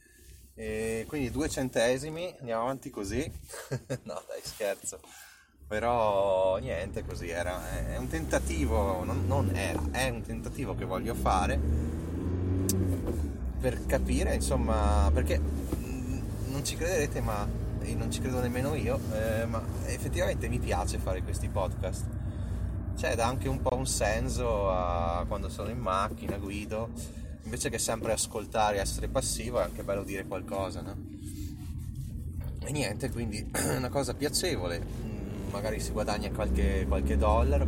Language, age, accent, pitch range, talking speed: Italian, 20-39, native, 80-110 Hz, 135 wpm